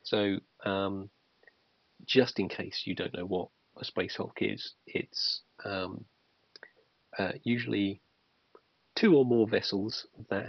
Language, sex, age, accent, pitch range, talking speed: English, male, 40-59, British, 95-110 Hz, 125 wpm